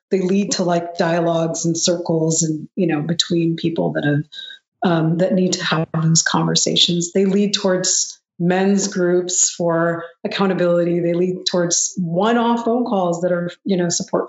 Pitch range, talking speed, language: 175-220 Hz, 170 wpm, English